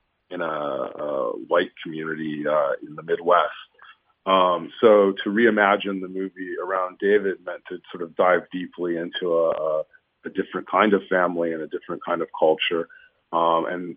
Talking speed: 165 wpm